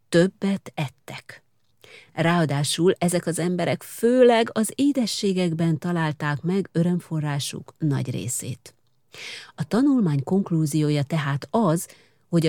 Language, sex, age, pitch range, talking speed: Hungarian, female, 40-59, 150-200 Hz, 95 wpm